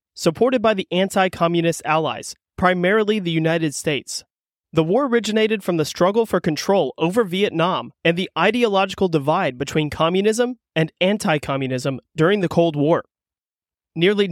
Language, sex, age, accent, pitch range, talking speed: English, male, 30-49, American, 155-190 Hz, 135 wpm